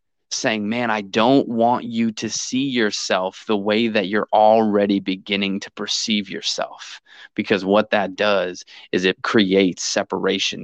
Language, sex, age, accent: English, male, 20-39, American